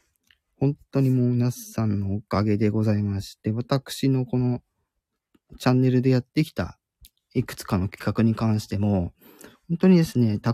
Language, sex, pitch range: Japanese, male, 105-155 Hz